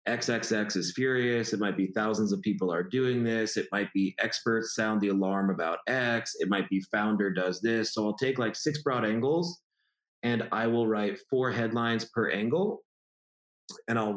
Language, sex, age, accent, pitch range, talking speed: English, male, 30-49, American, 100-120 Hz, 195 wpm